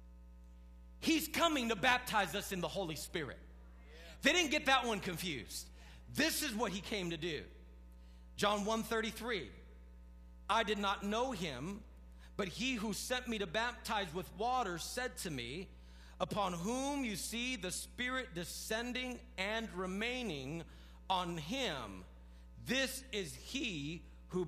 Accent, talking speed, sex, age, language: American, 140 wpm, male, 40-59, English